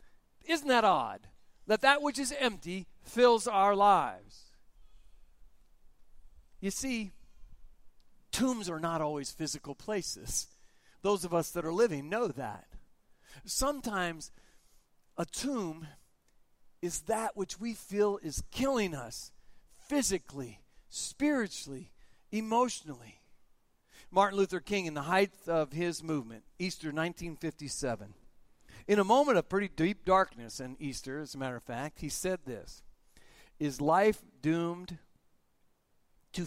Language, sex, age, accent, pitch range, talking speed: English, male, 50-69, American, 140-195 Hz, 120 wpm